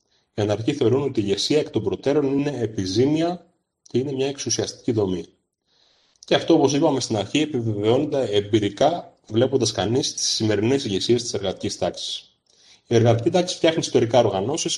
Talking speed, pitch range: 155 wpm, 115-160 Hz